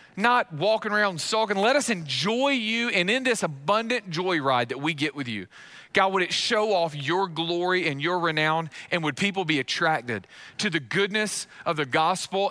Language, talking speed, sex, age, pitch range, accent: English, 190 wpm, male, 40-59, 150-205 Hz, American